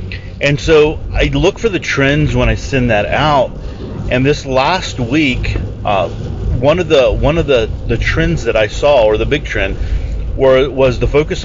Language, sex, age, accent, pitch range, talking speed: English, male, 30-49, American, 100-130 Hz, 190 wpm